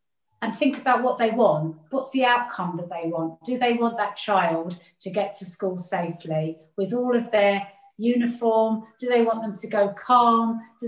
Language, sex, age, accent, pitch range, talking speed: English, female, 30-49, British, 185-225 Hz, 195 wpm